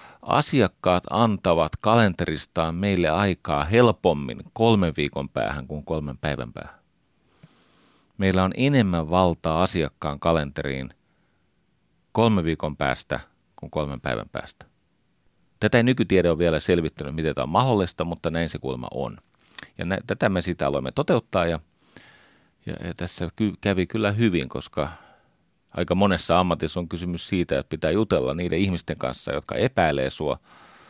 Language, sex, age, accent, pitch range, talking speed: Finnish, male, 40-59, native, 75-95 Hz, 140 wpm